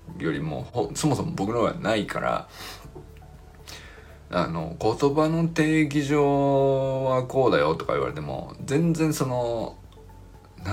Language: Japanese